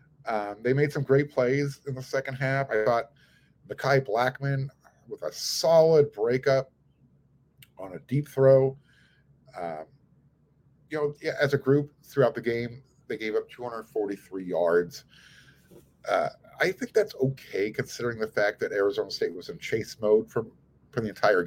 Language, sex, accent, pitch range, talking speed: English, male, American, 125-150 Hz, 155 wpm